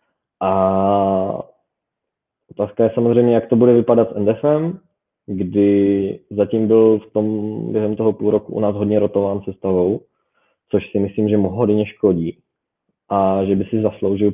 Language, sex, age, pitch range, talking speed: Czech, male, 20-39, 100-110 Hz, 150 wpm